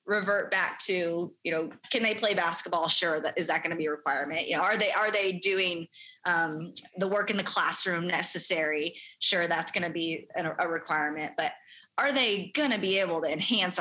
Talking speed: 210 wpm